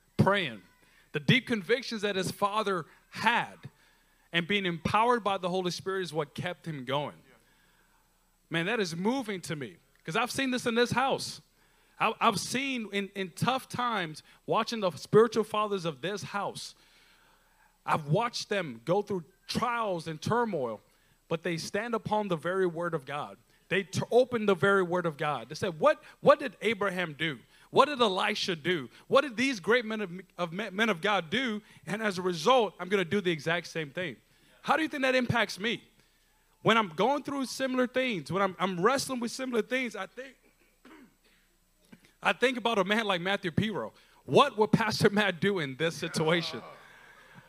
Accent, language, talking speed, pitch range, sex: American, English, 180 wpm, 175-230 Hz, male